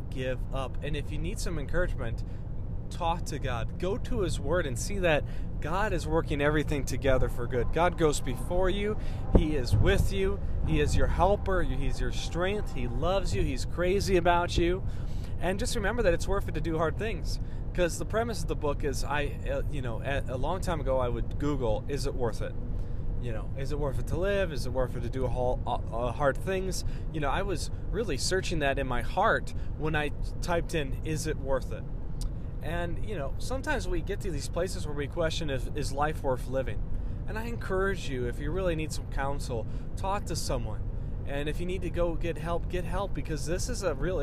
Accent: American